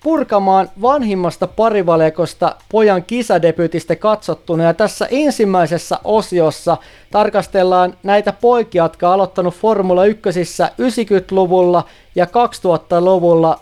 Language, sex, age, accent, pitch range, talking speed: Finnish, male, 30-49, native, 165-210 Hz, 90 wpm